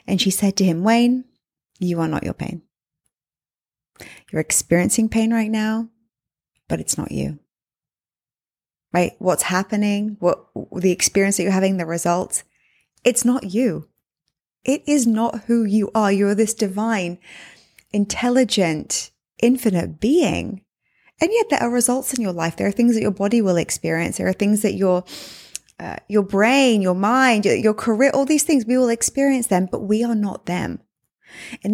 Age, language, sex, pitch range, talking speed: 20-39, English, female, 185-235 Hz, 165 wpm